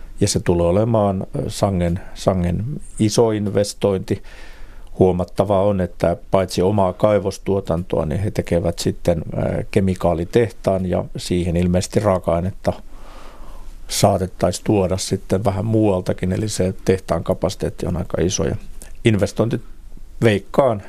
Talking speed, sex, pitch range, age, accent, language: 110 wpm, male, 90-105 Hz, 50-69, native, Finnish